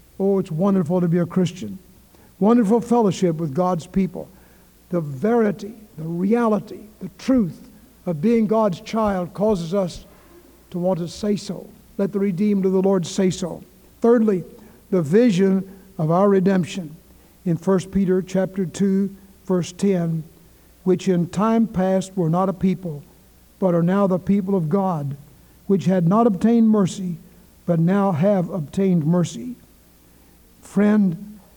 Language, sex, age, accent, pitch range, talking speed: English, male, 60-79, American, 175-205 Hz, 145 wpm